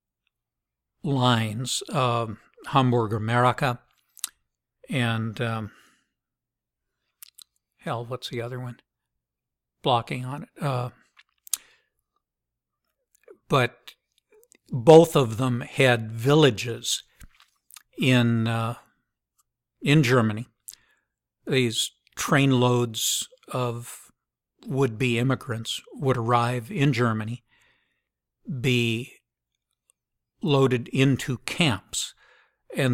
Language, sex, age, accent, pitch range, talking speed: English, male, 60-79, American, 115-140 Hz, 75 wpm